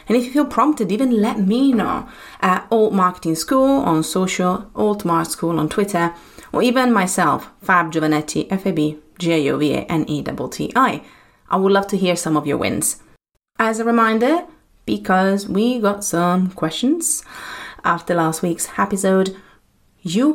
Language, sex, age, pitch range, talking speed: English, female, 30-49, 160-220 Hz, 170 wpm